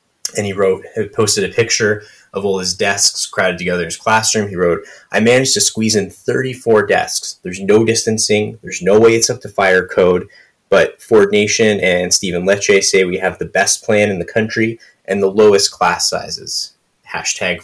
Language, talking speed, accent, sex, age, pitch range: English, 190 wpm, American, male, 20-39, 90-105 Hz